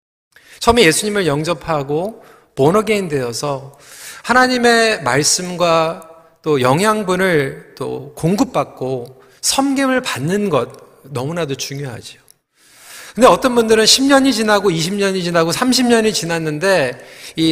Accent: native